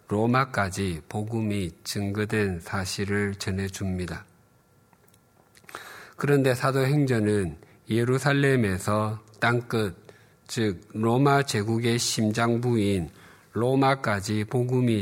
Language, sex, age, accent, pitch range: Korean, male, 50-69, native, 100-125 Hz